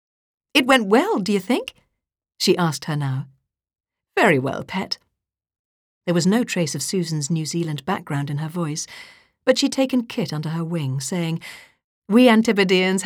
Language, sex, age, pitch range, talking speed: English, female, 50-69, 150-210 Hz, 160 wpm